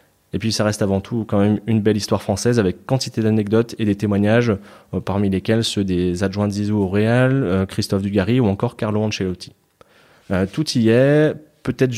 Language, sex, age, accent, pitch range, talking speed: French, male, 20-39, French, 100-120 Hz, 200 wpm